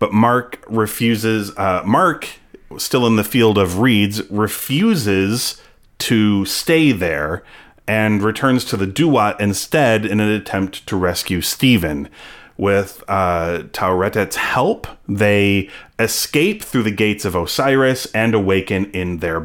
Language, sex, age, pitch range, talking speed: English, male, 30-49, 95-115 Hz, 130 wpm